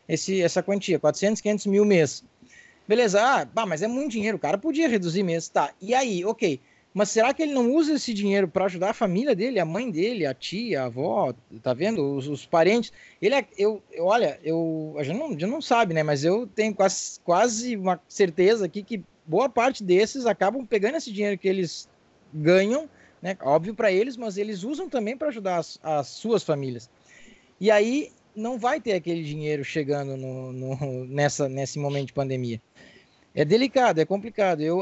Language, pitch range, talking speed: Portuguese, 160-225 Hz, 200 wpm